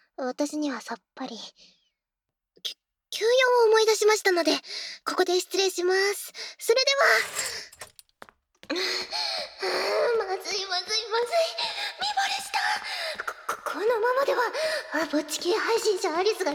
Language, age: Japanese, 20-39